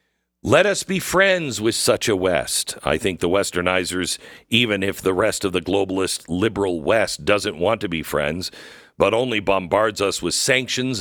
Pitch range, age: 100-140 Hz, 50-69